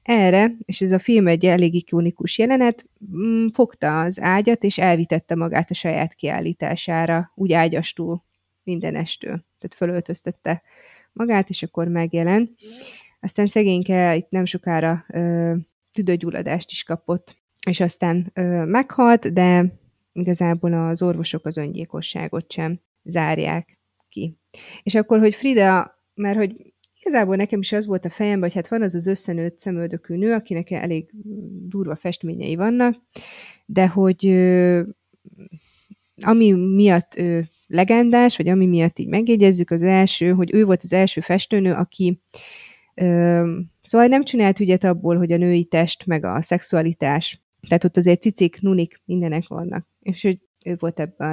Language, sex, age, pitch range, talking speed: Hungarian, female, 30-49, 170-200 Hz, 145 wpm